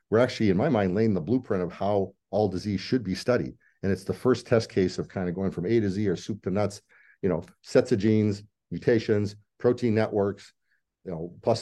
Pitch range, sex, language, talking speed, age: 90-110 Hz, male, English, 225 wpm, 50-69